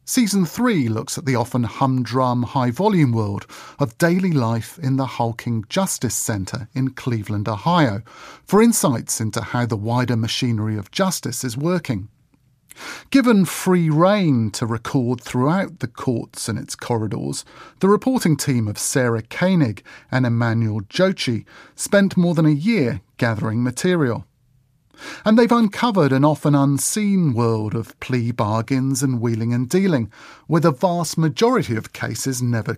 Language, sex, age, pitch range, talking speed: English, male, 40-59, 115-165 Hz, 145 wpm